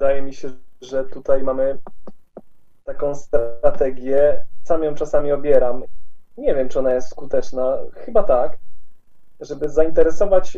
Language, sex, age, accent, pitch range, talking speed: Polish, male, 20-39, native, 135-165 Hz, 125 wpm